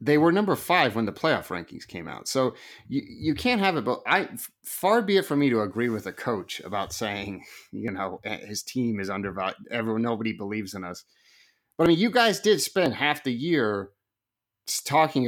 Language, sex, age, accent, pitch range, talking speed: English, male, 30-49, American, 105-150 Hz, 205 wpm